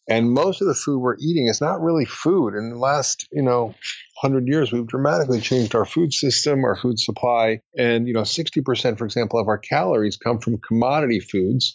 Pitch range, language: 105-125 Hz, English